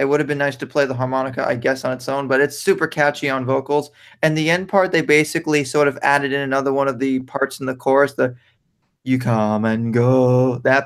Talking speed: 245 wpm